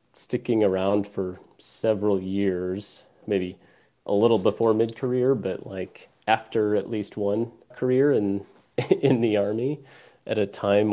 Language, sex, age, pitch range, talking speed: English, male, 30-49, 95-110 Hz, 130 wpm